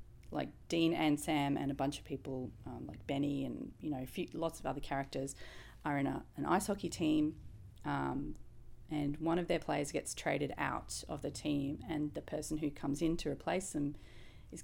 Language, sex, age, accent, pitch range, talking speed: English, female, 30-49, Australian, 135-160 Hz, 205 wpm